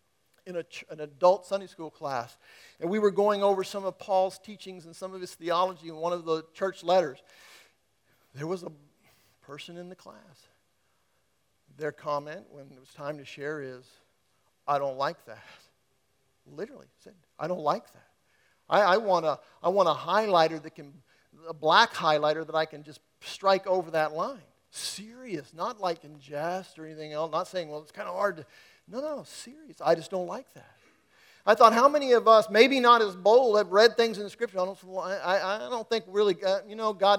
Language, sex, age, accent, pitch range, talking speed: English, male, 50-69, American, 160-225 Hz, 195 wpm